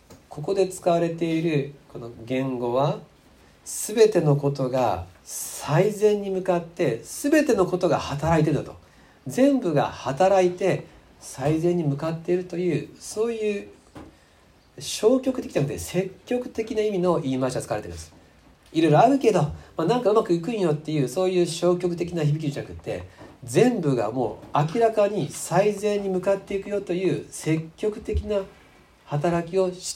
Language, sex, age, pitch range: Japanese, male, 40-59, 135-190 Hz